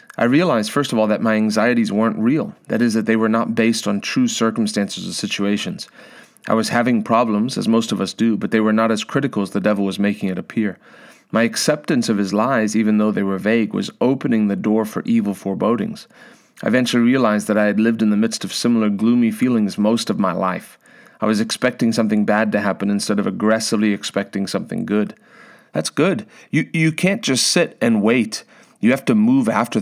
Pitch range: 105-155 Hz